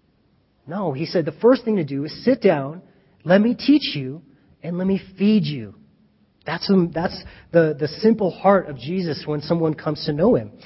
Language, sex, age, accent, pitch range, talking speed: English, male, 30-49, American, 145-195 Hz, 190 wpm